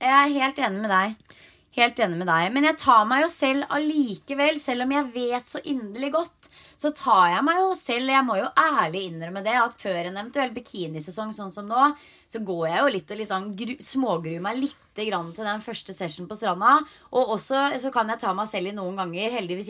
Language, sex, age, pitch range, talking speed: English, female, 20-39, 190-260 Hz, 220 wpm